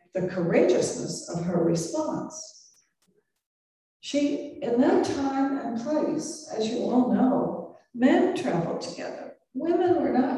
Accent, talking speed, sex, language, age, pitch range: American, 120 wpm, female, English, 60-79, 220-285 Hz